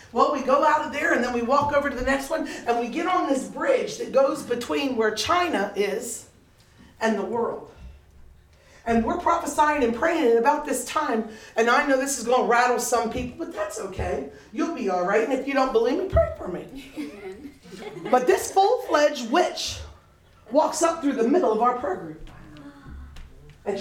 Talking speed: 200 wpm